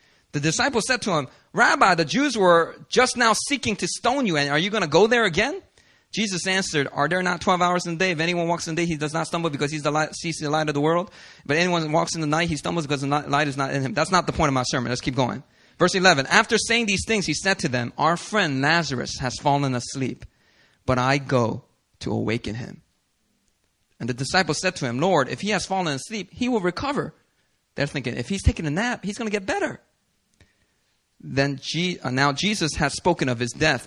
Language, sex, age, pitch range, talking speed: English, male, 30-49, 130-180 Hz, 240 wpm